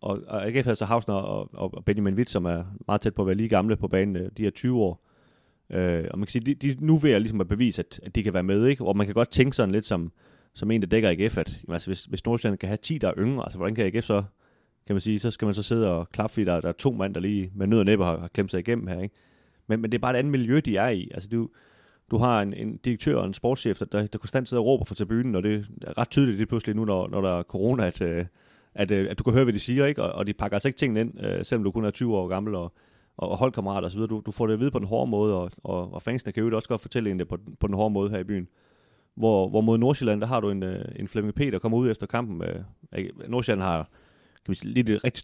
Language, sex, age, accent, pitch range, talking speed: Danish, male, 30-49, native, 95-120 Hz, 290 wpm